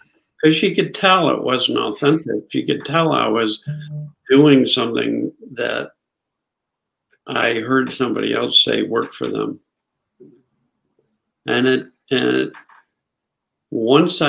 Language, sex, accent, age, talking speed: English, male, American, 60-79, 120 wpm